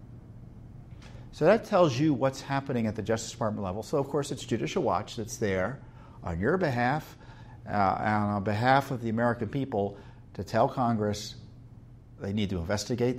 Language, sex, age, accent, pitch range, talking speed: English, male, 50-69, American, 100-120 Hz, 170 wpm